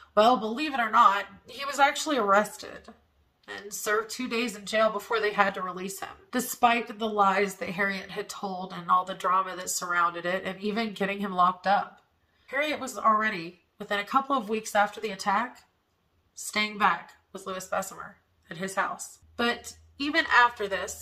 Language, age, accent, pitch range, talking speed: English, 30-49, American, 185-230 Hz, 185 wpm